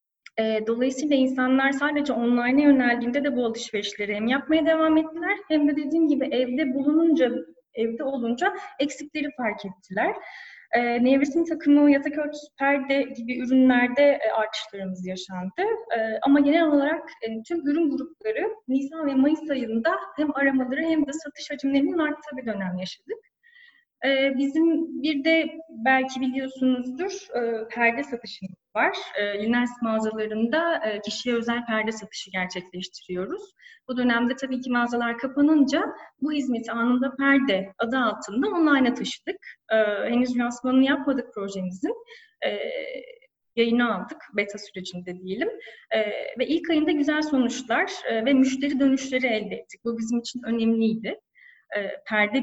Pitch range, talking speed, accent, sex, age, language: 225-305 Hz, 120 wpm, native, female, 10-29, Turkish